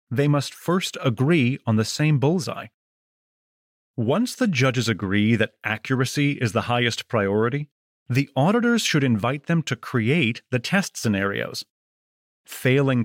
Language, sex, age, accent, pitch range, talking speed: English, male, 30-49, American, 115-160 Hz, 135 wpm